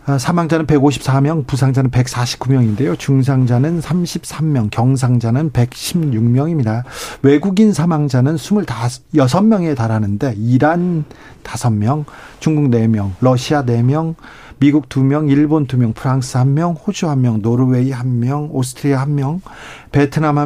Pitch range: 125-150 Hz